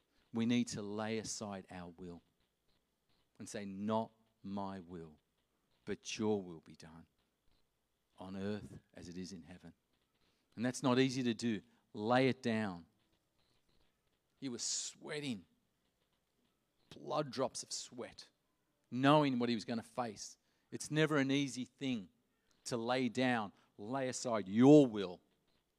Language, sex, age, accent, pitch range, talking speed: English, male, 40-59, Australian, 95-135 Hz, 135 wpm